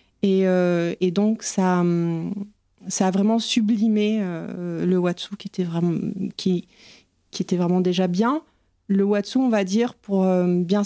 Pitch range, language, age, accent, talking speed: 180-210 Hz, French, 30-49, French, 160 wpm